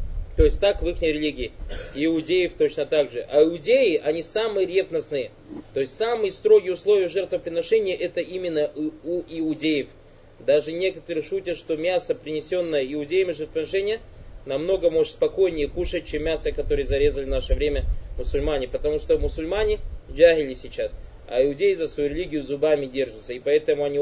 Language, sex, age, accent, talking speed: Russian, male, 20-39, native, 150 wpm